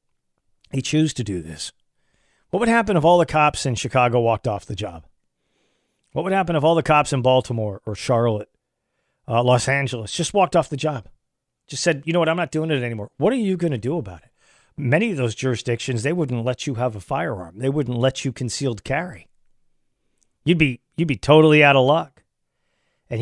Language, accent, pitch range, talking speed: English, American, 120-160 Hz, 205 wpm